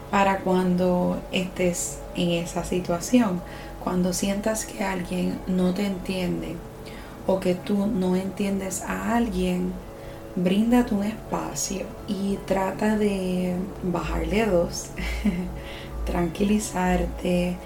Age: 20-39